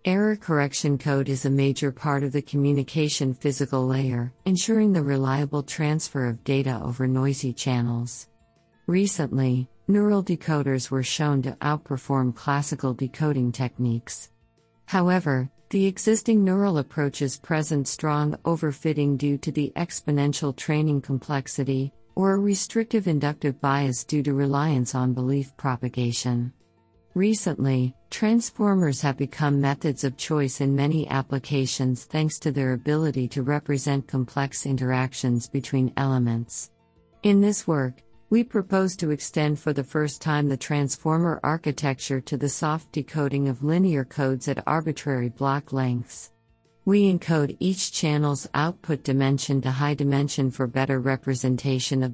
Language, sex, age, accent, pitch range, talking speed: English, female, 50-69, American, 130-150 Hz, 130 wpm